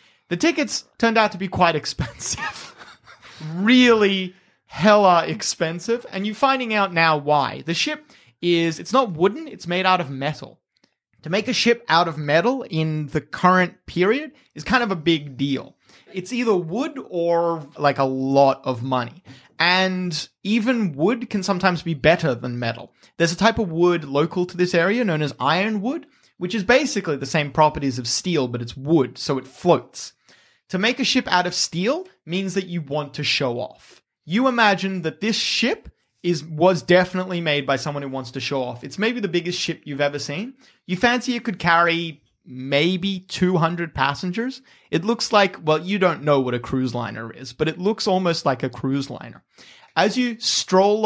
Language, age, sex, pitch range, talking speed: English, 30-49, male, 150-205 Hz, 185 wpm